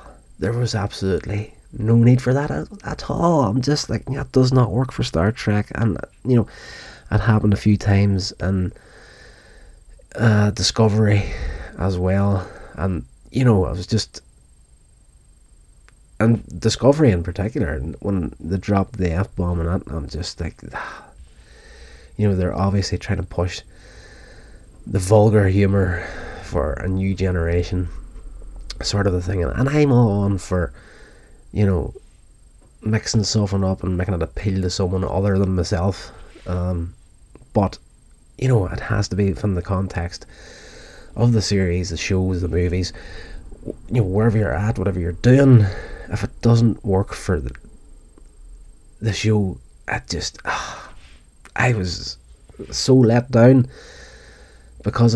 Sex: male